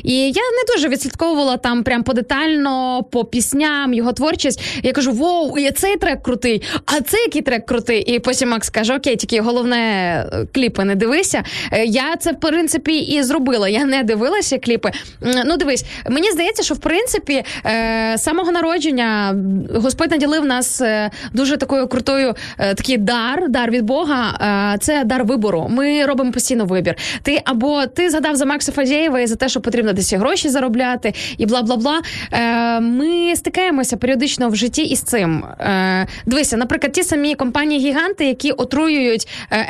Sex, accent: female, native